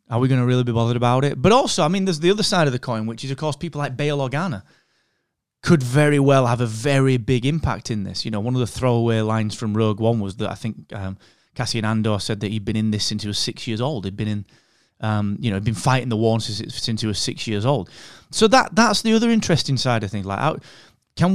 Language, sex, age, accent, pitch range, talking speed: English, male, 20-39, British, 110-140 Hz, 275 wpm